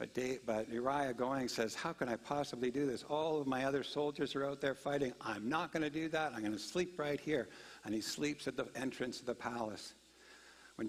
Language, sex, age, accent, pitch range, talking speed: English, male, 60-79, American, 120-150 Hz, 230 wpm